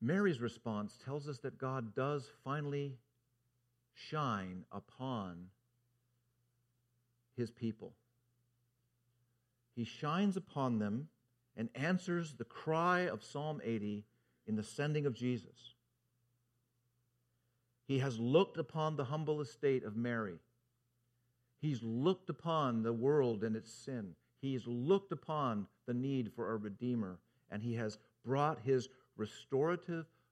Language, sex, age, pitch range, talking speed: English, male, 50-69, 115-125 Hz, 115 wpm